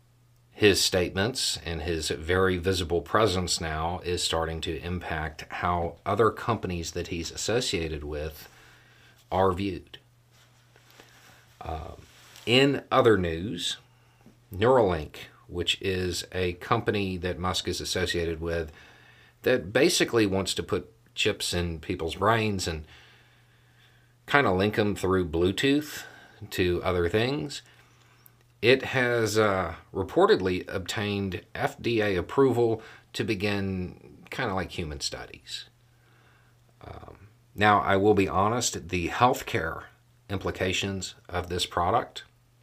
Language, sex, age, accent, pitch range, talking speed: English, male, 40-59, American, 90-120 Hz, 115 wpm